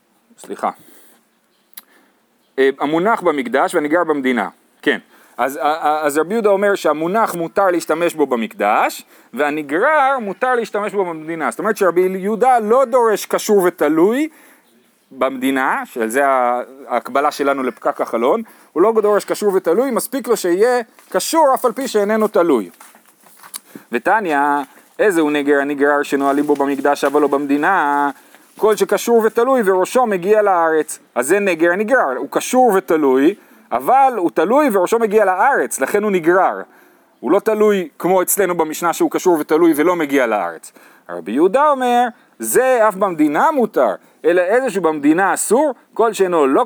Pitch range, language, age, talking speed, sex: 150-230 Hz, Hebrew, 30-49, 140 wpm, male